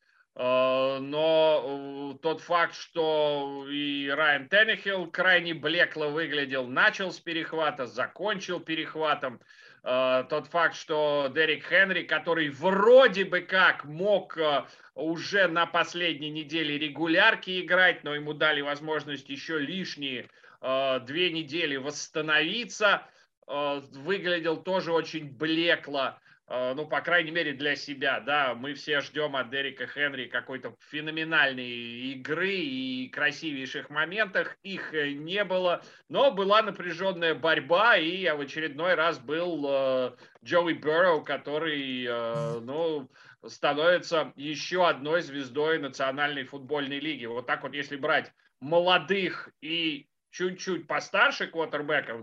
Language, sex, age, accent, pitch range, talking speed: Russian, male, 30-49, native, 140-175 Hz, 110 wpm